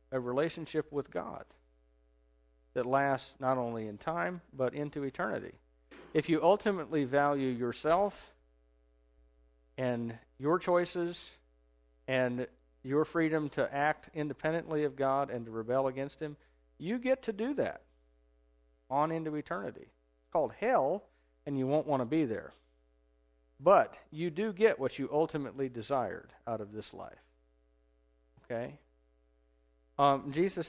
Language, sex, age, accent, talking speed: English, male, 50-69, American, 135 wpm